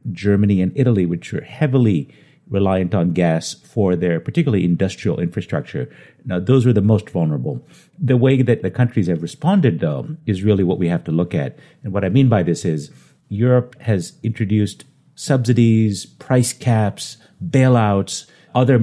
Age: 50-69